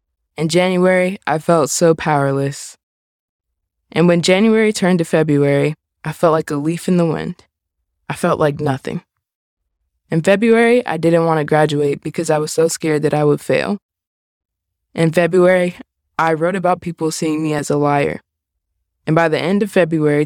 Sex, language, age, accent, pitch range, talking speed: female, English, 20-39, American, 115-170 Hz, 170 wpm